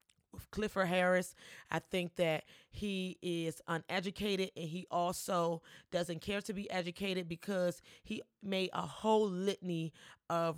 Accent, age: American, 30-49